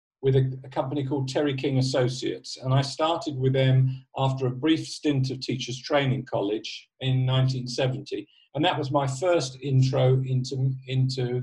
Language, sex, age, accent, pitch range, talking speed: English, male, 50-69, British, 130-145 Hz, 165 wpm